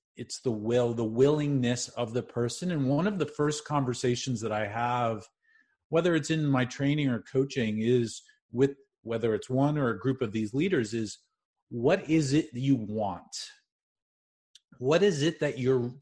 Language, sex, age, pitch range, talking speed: English, male, 30-49, 125-155 Hz, 170 wpm